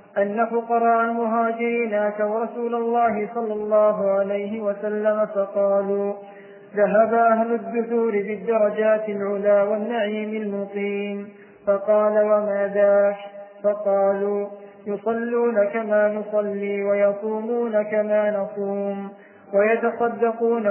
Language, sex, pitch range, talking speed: Arabic, male, 200-225 Hz, 80 wpm